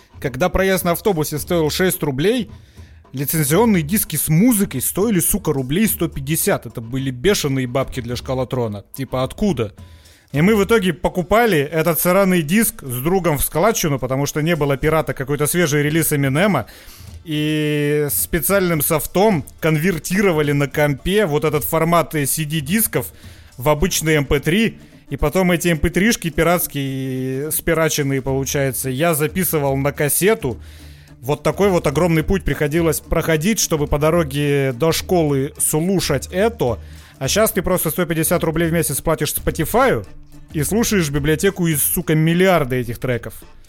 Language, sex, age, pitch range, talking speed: Russian, male, 30-49, 135-180 Hz, 140 wpm